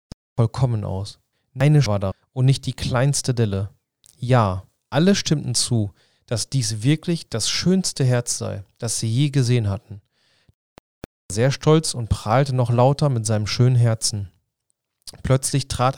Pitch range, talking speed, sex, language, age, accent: 110-140 Hz, 145 wpm, male, German, 30-49, German